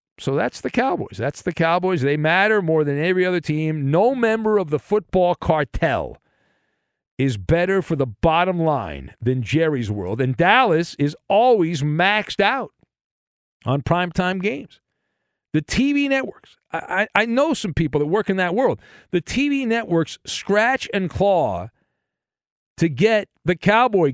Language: English